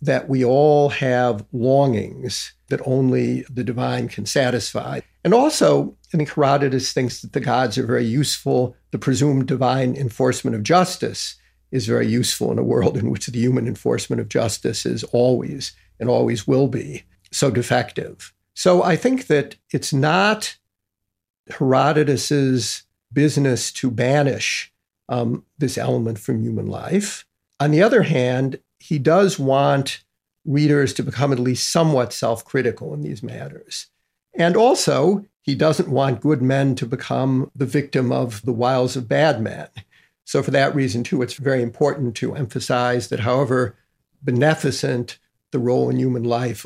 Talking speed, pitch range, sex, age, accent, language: 150 wpm, 125-145 Hz, male, 50-69, American, English